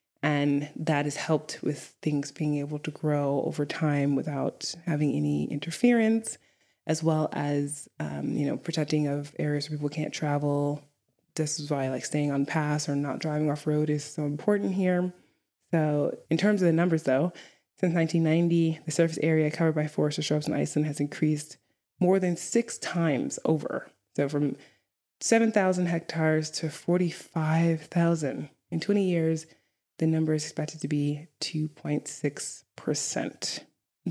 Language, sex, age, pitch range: English, female, 20-39, 150-175 Hz